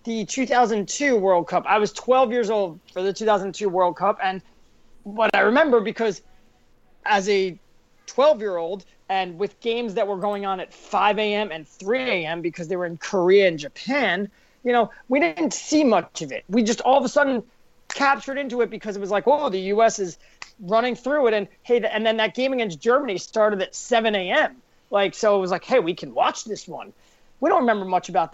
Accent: American